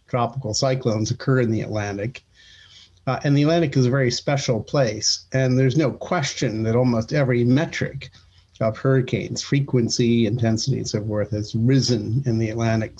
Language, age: English, 50-69